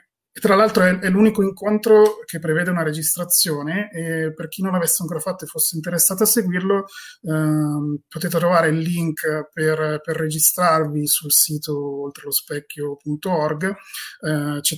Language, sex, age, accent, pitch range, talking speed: Italian, male, 20-39, native, 150-180 Hz, 140 wpm